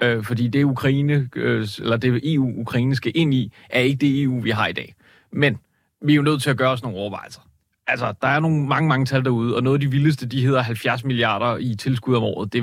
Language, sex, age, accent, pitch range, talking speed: Danish, male, 30-49, native, 115-135 Hz, 230 wpm